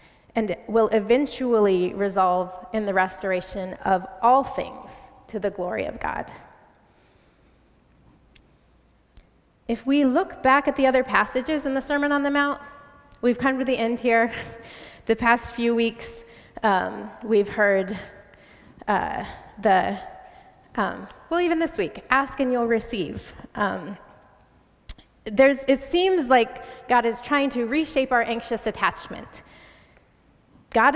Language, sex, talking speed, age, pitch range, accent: English, female, 130 wpm, 20-39, 200-270 Hz, American